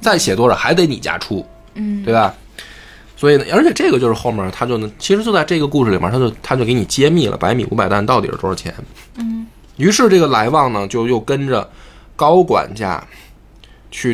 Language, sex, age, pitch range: Chinese, male, 20-39, 105-140 Hz